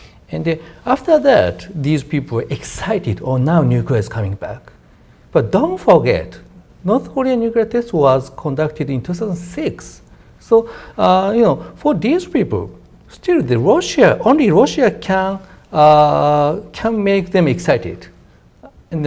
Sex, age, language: male, 60-79, Japanese